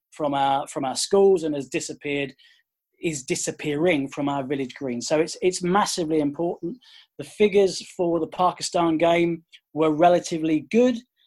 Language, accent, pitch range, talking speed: English, British, 155-190 Hz, 150 wpm